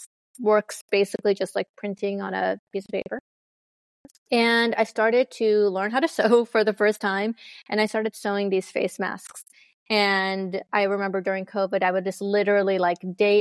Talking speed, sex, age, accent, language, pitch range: 180 wpm, female, 20-39, American, English, 195-215 Hz